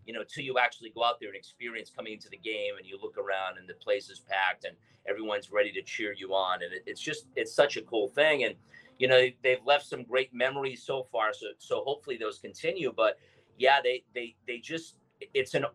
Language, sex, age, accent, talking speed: English, male, 40-59, American, 235 wpm